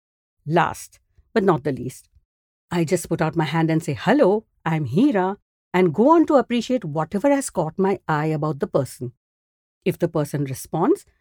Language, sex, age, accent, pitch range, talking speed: English, female, 50-69, Indian, 150-215 Hz, 175 wpm